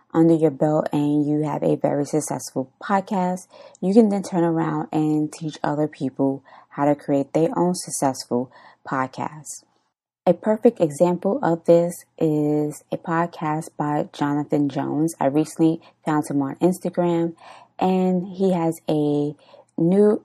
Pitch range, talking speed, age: 145-170 Hz, 140 wpm, 20-39